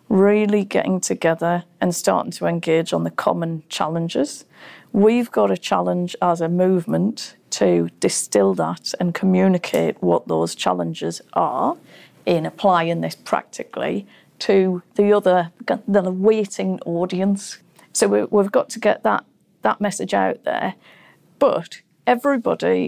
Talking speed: 130 wpm